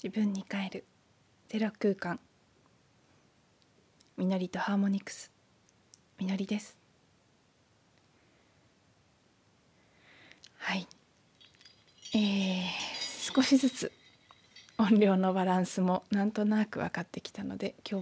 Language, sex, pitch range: Japanese, female, 190-230 Hz